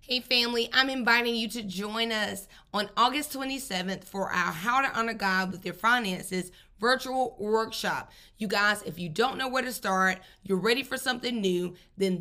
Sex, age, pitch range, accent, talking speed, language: female, 20-39, 200-255 Hz, American, 180 wpm, English